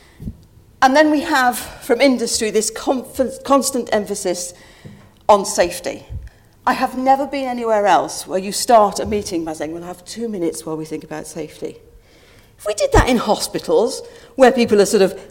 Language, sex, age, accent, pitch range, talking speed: English, female, 50-69, British, 175-265 Hz, 175 wpm